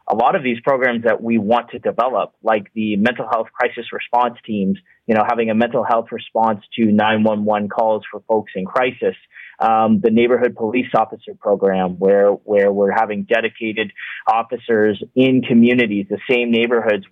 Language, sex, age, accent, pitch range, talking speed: English, male, 30-49, American, 110-125 Hz, 170 wpm